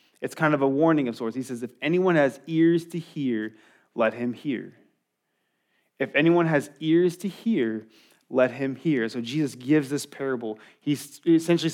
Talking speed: 175 wpm